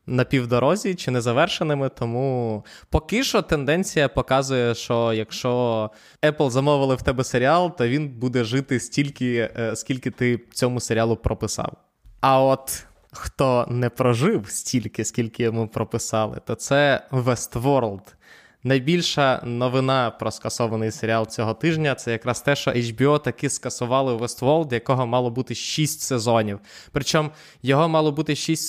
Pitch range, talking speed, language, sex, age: 115-145 Hz, 135 wpm, Ukrainian, male, 20-39